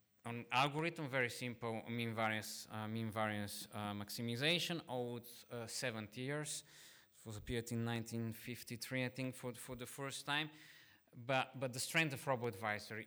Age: 20-39